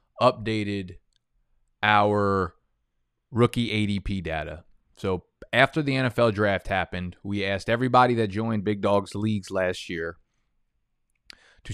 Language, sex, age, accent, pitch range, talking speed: English, male, 20-39, American, 95-120 Hz, 110 wpm